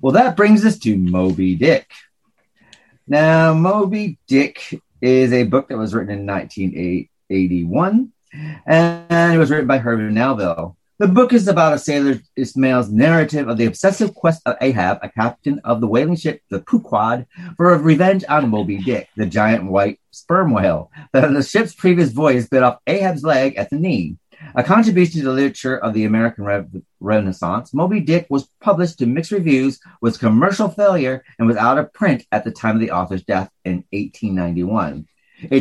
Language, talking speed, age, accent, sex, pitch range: English, 175 wpm, 40-59, American, male, 110-165 Hz